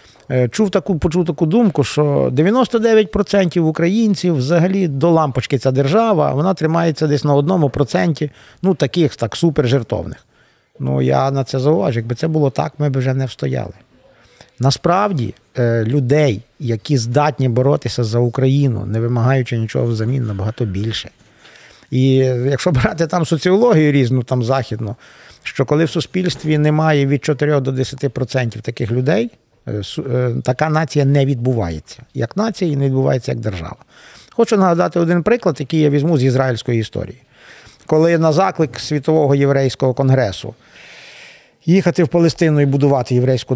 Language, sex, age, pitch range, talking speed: Ukrainian, male, 50-69, 120-165 Hz, 140 wpm